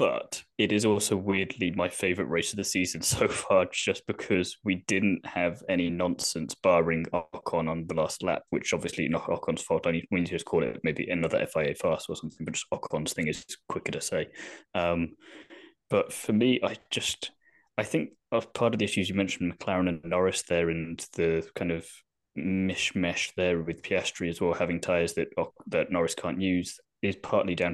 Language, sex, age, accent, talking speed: English, male, 20-39, British, 200 wpm